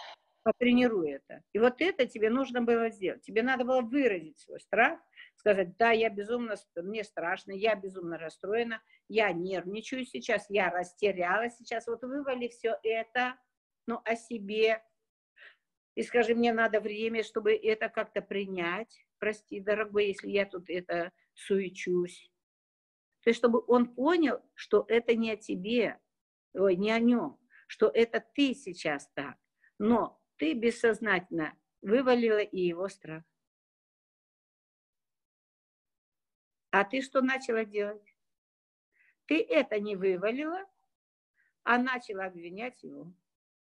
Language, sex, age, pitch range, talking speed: Russian, female, 50-69, 195-245 Hz, 125 wpm